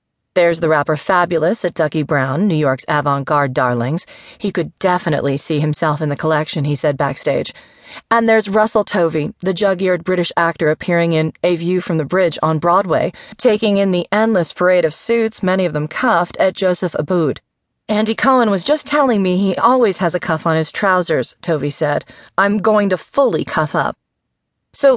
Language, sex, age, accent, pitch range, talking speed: English, female, 40-59, American, 160-210 Hz, 185 wpm